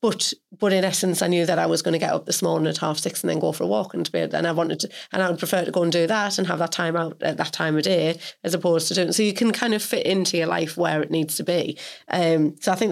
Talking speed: 330 wpm